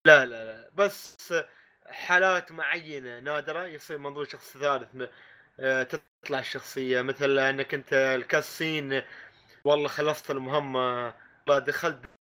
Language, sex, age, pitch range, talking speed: Arabic, male, 20-39, 135-175 Hz, 105 wpm